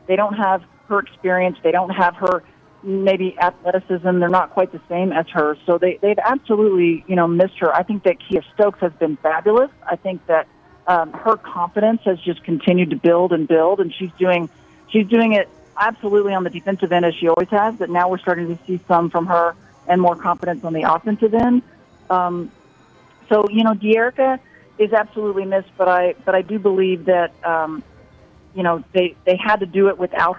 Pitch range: 170-200 Hz